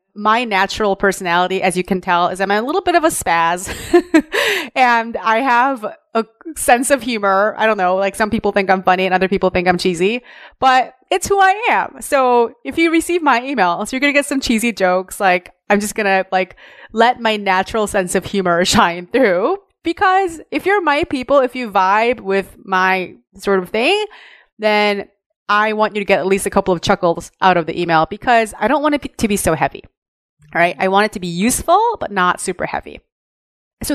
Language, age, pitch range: English, 30-49, 190-280 Hz